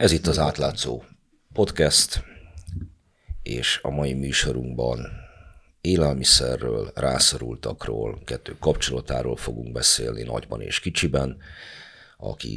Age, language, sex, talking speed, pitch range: 50-69, Hungarian, male, 90 wpm, 65-85 Hz